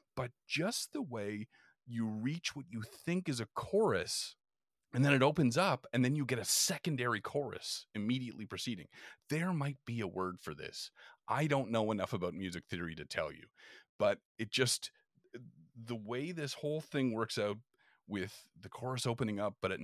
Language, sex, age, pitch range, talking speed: English, male, 30-49, 105-130 Hz, 180 wpm